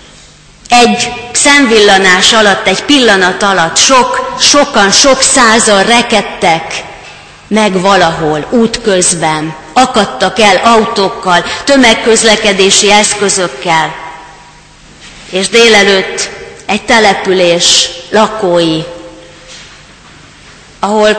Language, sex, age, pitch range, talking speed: Hungarian, female, 30-49, 180-230 Hz, 70 wpm